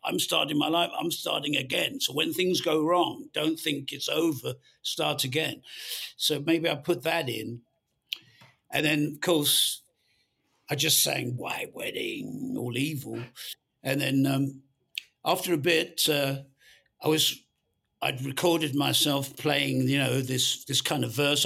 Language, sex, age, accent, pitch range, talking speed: English, male, 60-79, British, 130-170 Hz, 155 wpm